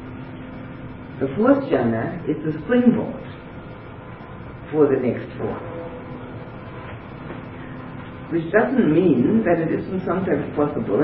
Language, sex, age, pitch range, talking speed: English, female, 50-69, 130-165 Hz, 100 wpm